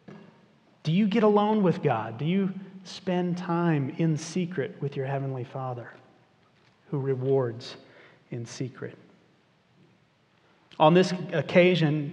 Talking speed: 115 wpm